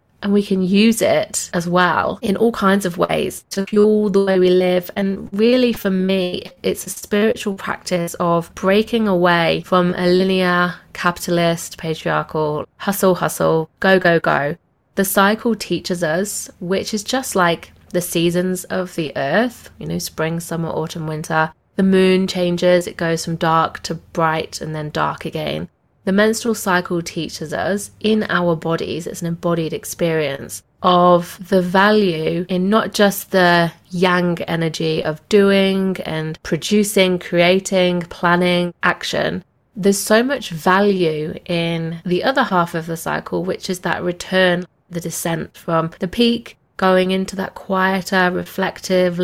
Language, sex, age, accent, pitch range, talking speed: English, female, 20-39, British, 170-195 Hz, 150 wpm